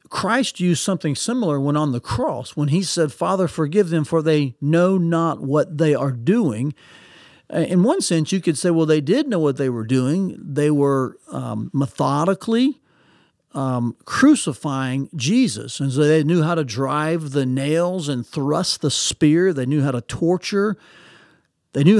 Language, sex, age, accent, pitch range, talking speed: English, male, 50-69, American, 140-185 Hz, 170 wpm